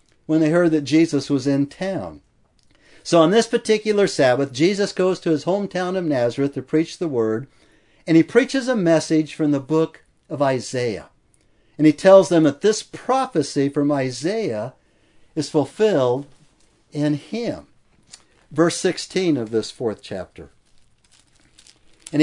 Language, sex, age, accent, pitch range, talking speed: English, male, 60-79, American, 140-175 Hz, 145 wpm